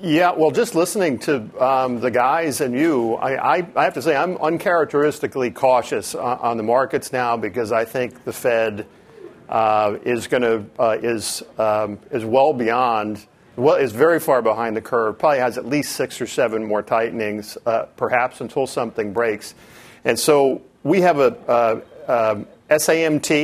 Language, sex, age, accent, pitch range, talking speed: English, male, 50-69, American, 110-135 Hz, 170 wpm